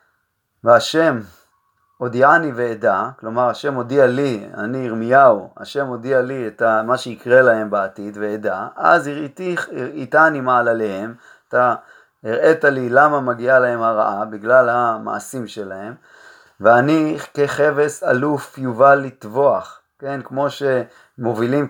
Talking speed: 115 wpm